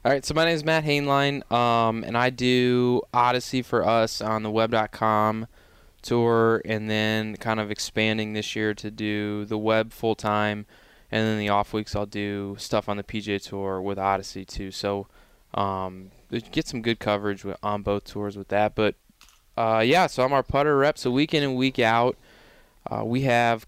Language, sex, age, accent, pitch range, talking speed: English, male, 20-39, American, 105-125 Hz, 190 wpm